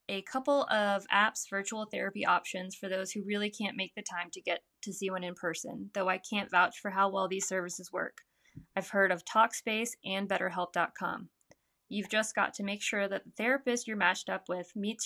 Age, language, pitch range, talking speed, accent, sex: 10-29, English, 190-220 Hz, 205 wpm, American, female